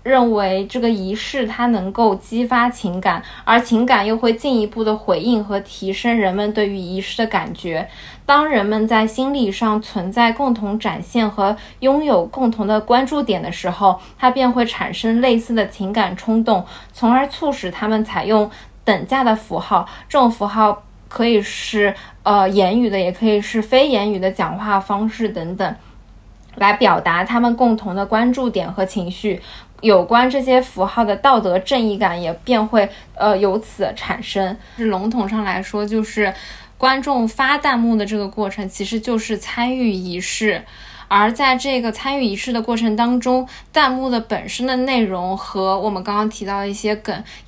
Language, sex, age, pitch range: Chinese, female, 20-39, 200-240 Hz